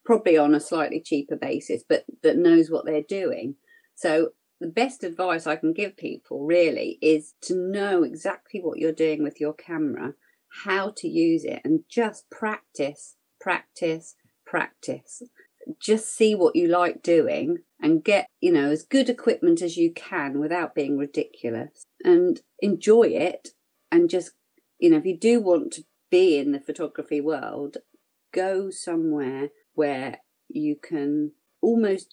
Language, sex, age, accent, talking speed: English, female, 40-59, British, 155 wpm